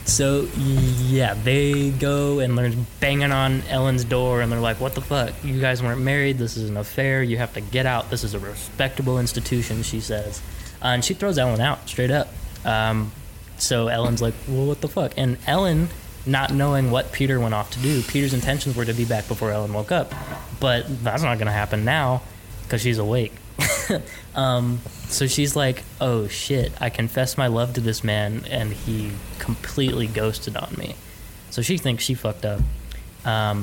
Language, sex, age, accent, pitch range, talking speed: English, male, 20-39, American, 105-130 Hz, 195 wpm